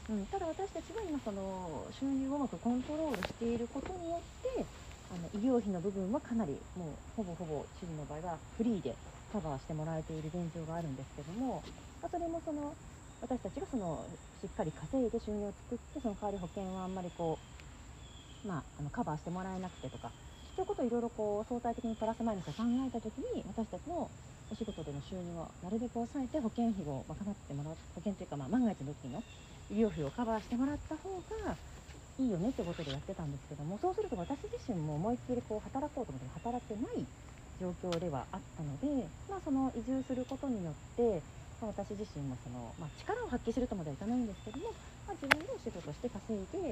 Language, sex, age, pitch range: Japanese, female, 40-59, 160-245 Hz